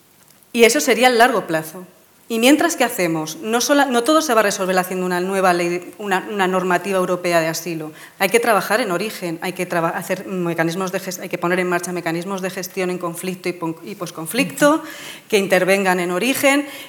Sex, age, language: female, 30-49, Spanish